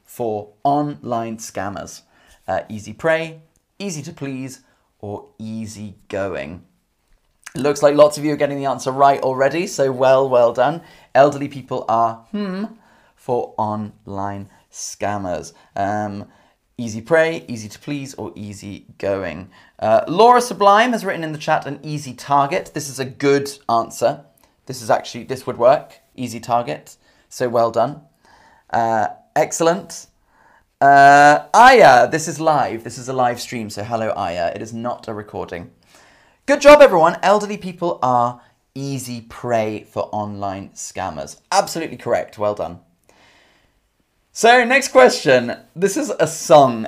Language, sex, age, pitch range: English, male, 30-49, 115-170 Hz